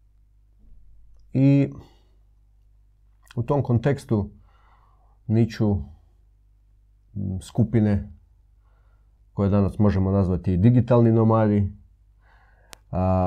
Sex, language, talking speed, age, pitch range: male, Croatian, 60 wpm, 40-59, 95-110 Hz